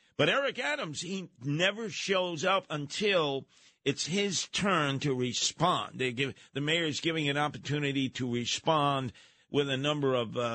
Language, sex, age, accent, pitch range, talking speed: English, male, 50-69, American, 125-160 Hz, 160 wpm